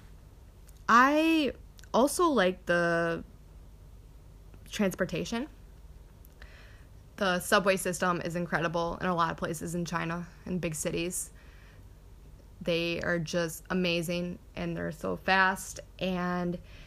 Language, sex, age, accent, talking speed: English, female, 20-39, American, 105 wpm